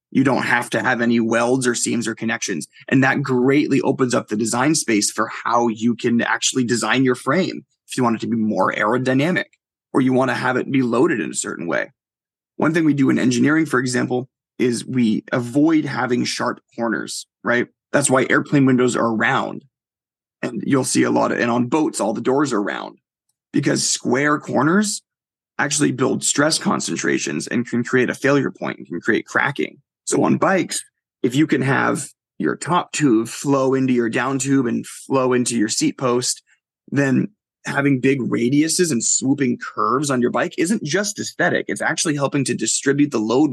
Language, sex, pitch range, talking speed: English, male, 120-145 Hz, 195 wpm